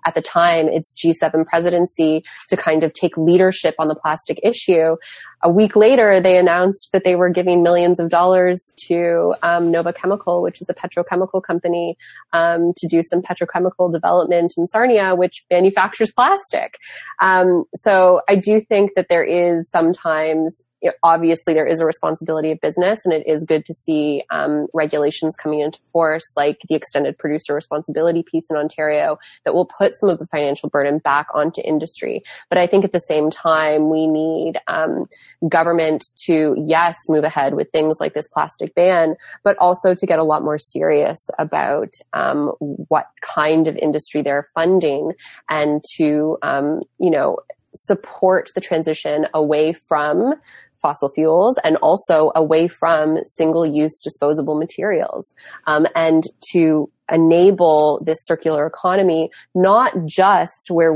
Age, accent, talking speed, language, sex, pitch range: 20-39, American, 155 wpm, English, female, 155-180 Hz